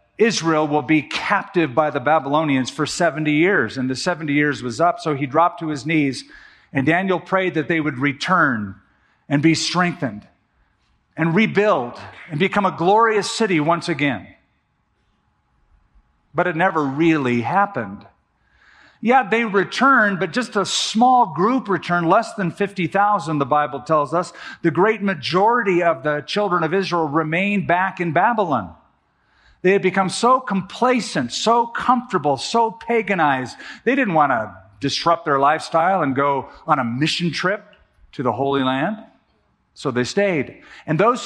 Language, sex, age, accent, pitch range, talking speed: English, male, 50-69, American, 150-205 Hz, 155 wpm